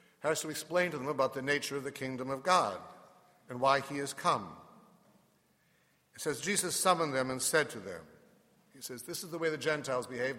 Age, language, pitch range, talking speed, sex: 60-79, English, 135-170 Hz, 210 wpm, male